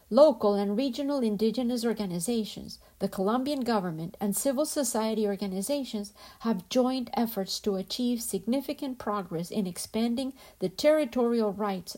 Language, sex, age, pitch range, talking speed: Spanish, female, 50-69, 205-260 Hz, 120 wpm